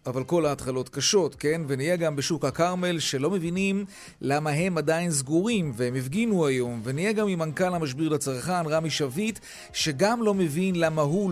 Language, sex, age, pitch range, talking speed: Hebrew, male, 40-59, 145-185 Hz, 165 wpm